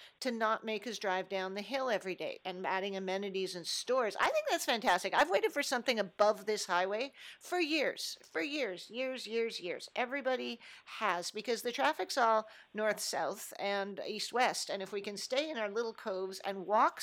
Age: 50-69